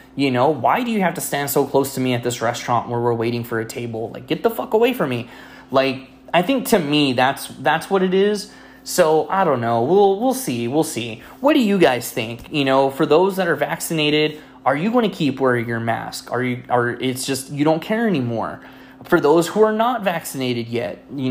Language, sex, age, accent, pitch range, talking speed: English, male, 20-39, American, 120-195 Hz, 235 wpm